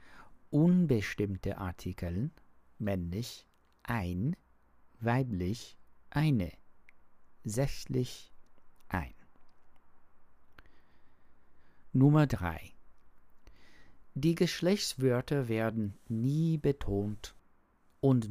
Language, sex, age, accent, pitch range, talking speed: English, male, 50-69, German, 90-130 Hz, 50 wpm